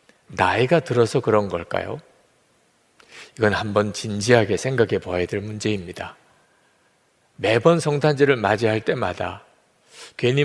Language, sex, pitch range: Korean, male, 110-155 Hz